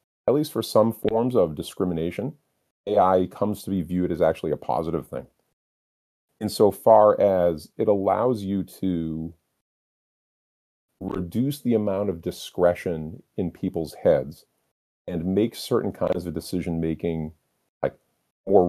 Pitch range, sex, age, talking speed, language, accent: 80-95 Hz, male, 40-59, 120 wpm, English, American